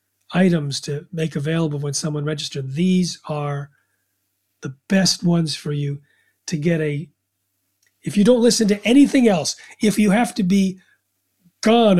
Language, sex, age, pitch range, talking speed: English, male, 40-59, 140-180 Hz, 150 wpm